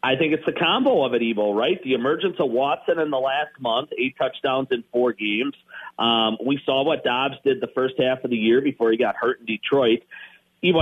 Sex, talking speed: male, 225 wpm